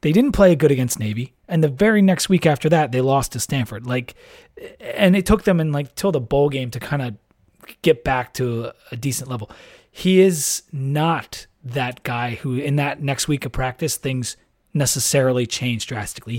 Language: English